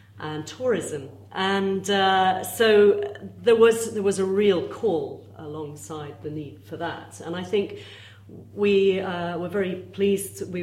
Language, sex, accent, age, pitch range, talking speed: English, female, British, 40-59, 135-195 Hz, 145 wpm